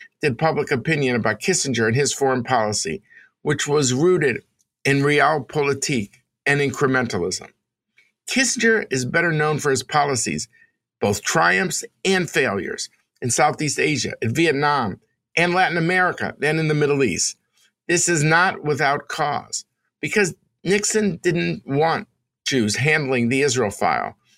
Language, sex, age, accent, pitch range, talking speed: English, male, 50-69, American, 130-170 Hz, 135 wpm